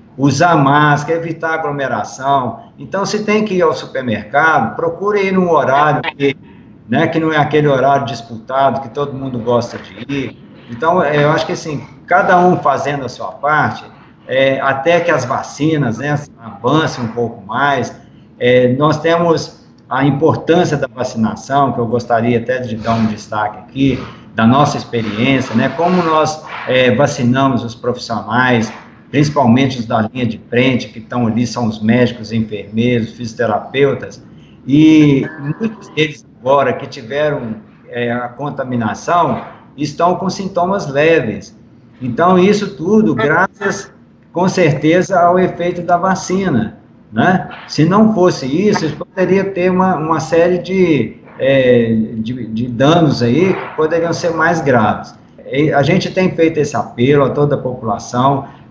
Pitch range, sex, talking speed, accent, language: 120-170 Hz, male, 145 wpm, Brazilian, Portuguese